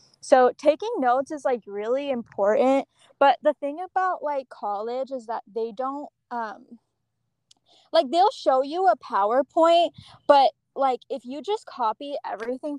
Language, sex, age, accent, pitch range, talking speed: English, female, 10-29, American, 225-285 Hz, 145 wpm